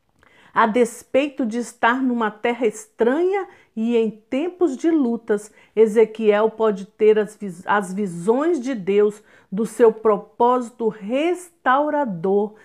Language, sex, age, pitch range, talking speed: Portuguese, female, 50-69, 205-285 Hz, 115 wpm